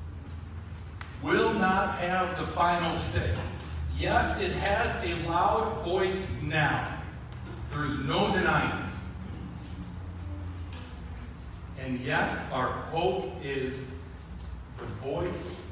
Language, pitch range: English, 90-140 Hz